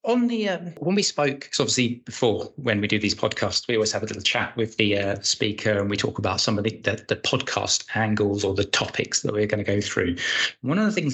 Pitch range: 105-125 Hz